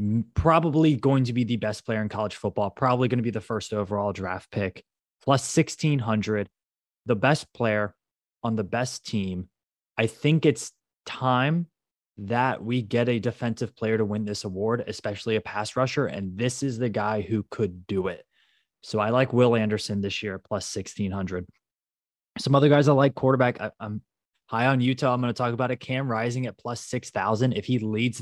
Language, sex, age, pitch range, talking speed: English, male, 20-39, 105-125 Hz, 185 wpm